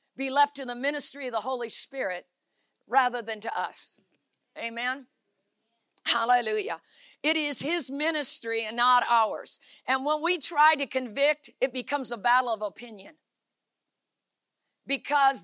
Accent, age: American, 50-69